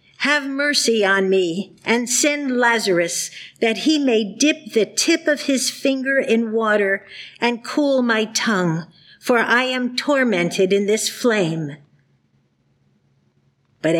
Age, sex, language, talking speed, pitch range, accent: 50-69, female, English, 130 wpm, 175-245 Hz, American